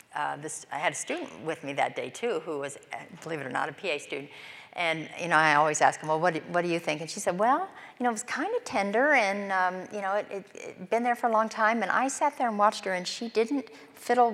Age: 50-69